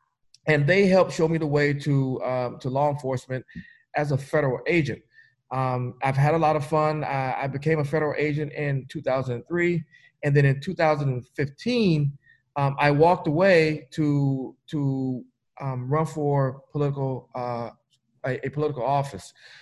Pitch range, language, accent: 130-155 Hz, English, American